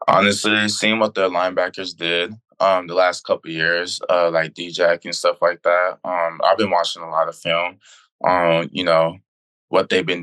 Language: English